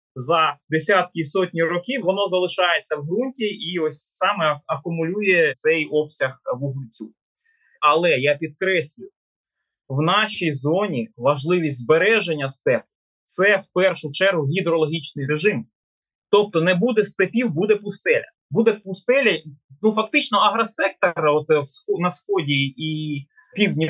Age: 20-39